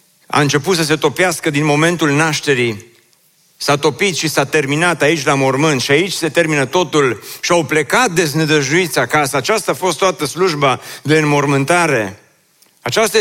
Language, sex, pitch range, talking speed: Romanian, male, 160-210 Hz, 155 wpm